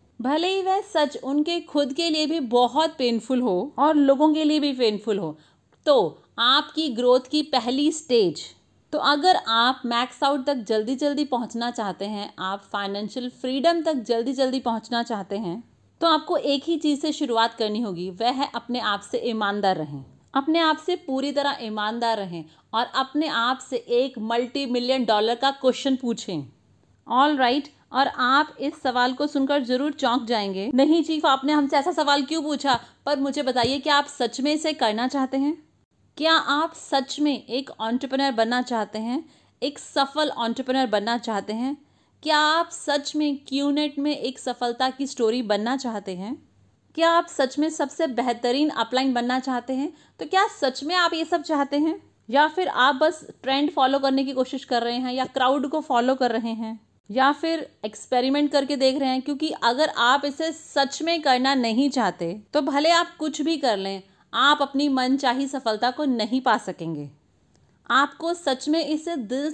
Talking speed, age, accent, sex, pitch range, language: 185 wpm, 40-59, native, female, 235-295 Hz, Hindi